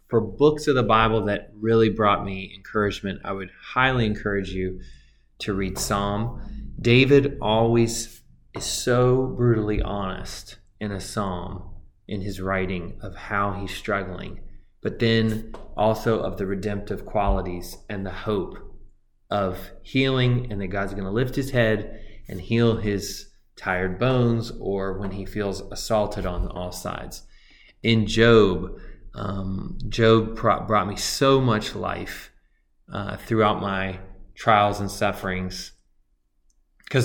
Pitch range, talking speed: 95-110 Hz, 135 wpm